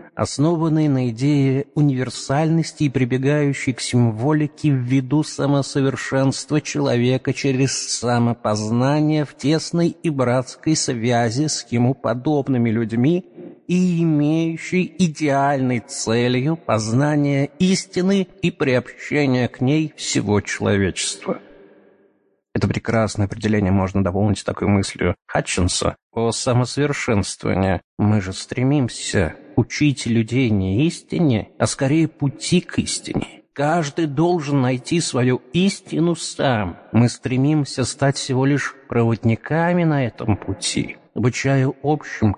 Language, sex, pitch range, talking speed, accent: Russian, male, 115-155 Hz, 105 wpm, native